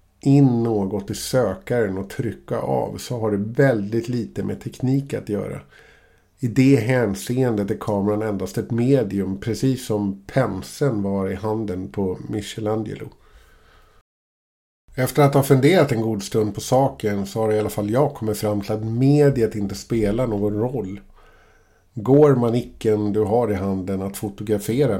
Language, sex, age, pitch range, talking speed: Swedish, male, 50-69, 100-115 Hz, 160 wpm